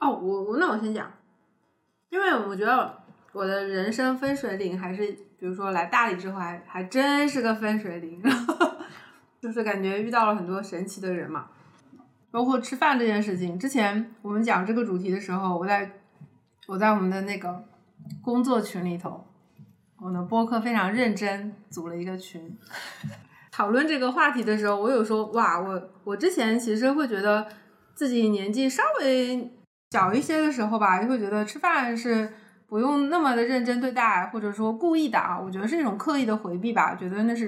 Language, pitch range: Chinese, 185-235 Hz